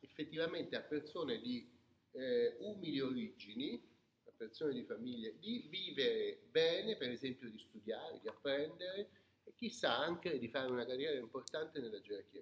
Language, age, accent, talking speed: Italian, 40-59, native, 145 wpm